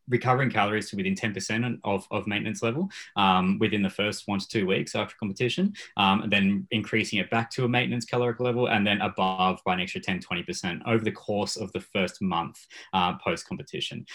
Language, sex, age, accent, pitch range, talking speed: English, male, 20-39, Australian, 100-125 Hz, 195 wpm